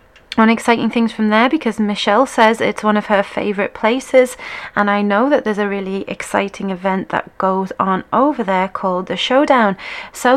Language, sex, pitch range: English, female, 195-250 Hz